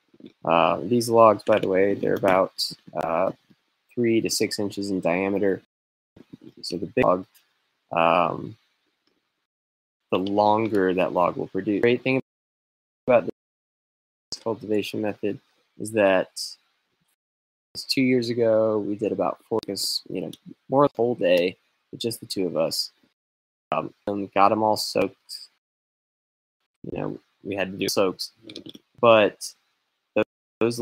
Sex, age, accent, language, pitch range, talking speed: male, 20-39, American, English, 95-115 Hz, 135 wpm